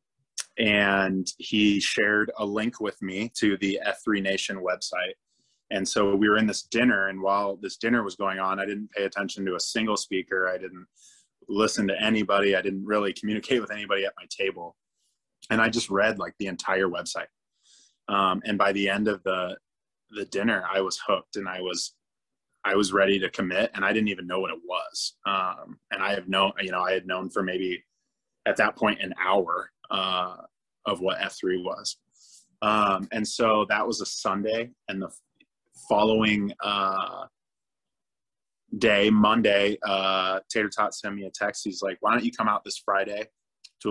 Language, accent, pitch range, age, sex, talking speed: English, American, 95-105 Hz, 20-39, male, 185 wpm